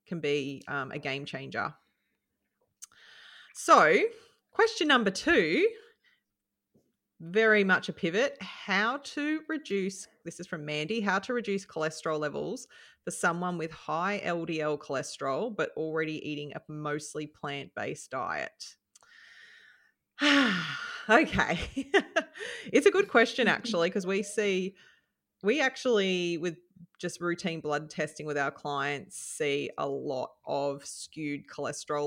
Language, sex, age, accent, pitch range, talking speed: English, female, 30-49, Australian, 150-235 Hz, 120 wpm